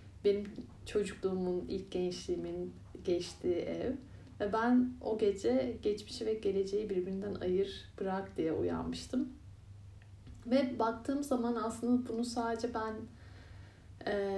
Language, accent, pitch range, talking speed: Turkish, native, 185-235 Hz, 110 wpm